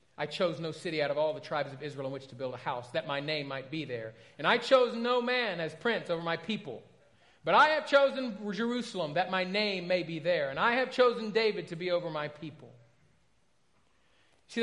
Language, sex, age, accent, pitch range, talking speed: English, male, 40-59, American, 170-245 Hz, 225 wpm